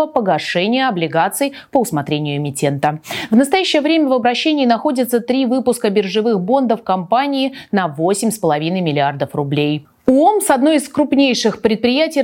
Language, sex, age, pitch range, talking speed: Russian, female, 30-49, 175-260 Hz, 130 wpm